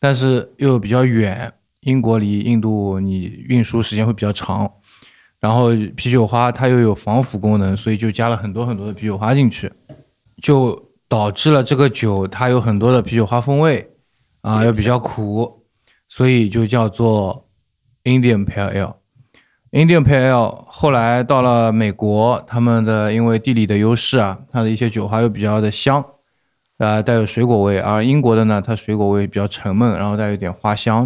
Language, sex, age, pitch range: Chinese, male, 20-39, 105-125 Hz